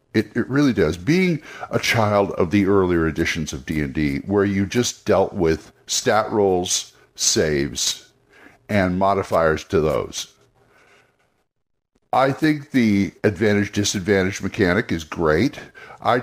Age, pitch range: 60-79, 95-125 Hz